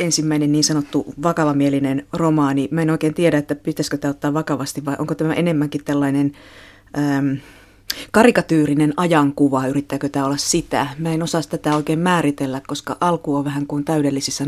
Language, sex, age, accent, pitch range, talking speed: Finnish, female, 30-49, native, 140-155 Hz, 160 wpm